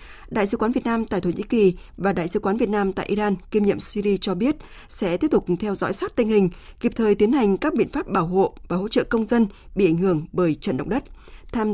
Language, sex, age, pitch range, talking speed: Vietnamese, female, 20-39, 185-225 Hz, 265 wpm